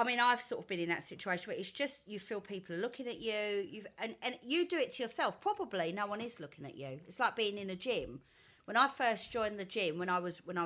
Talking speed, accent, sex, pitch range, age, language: 285 wpm, British, female, 175-250 Hz, 40-59, English